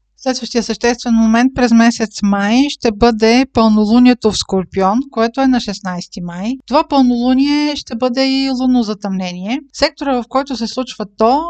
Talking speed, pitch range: 150 wpm, 205-260 Hz